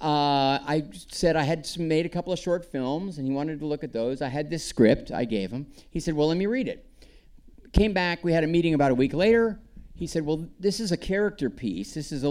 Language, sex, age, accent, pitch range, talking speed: English, male, 50-69, American, 135-175 Hz, 260 wpm